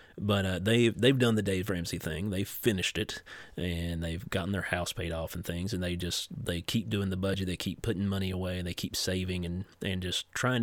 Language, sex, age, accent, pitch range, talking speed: English, male, 30-49, American, 90-105 Hz, 235 wpm